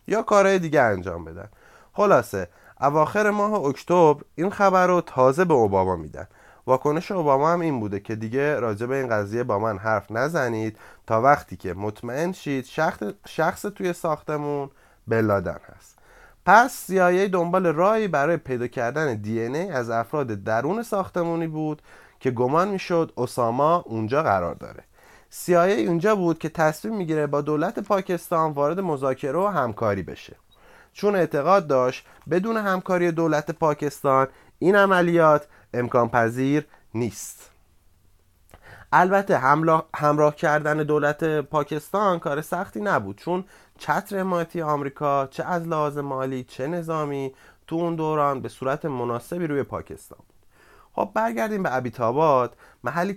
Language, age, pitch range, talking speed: Persian, 30-49, 120-175 Hz, 135 wpm